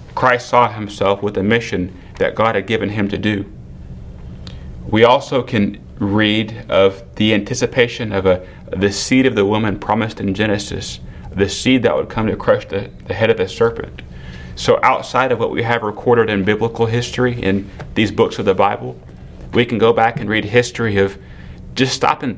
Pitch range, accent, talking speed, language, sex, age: 95-120 Hz, American, 190 wpm, English, male, 30-49